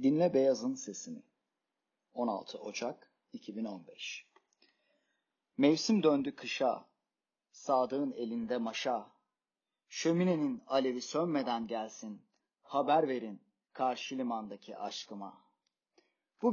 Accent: native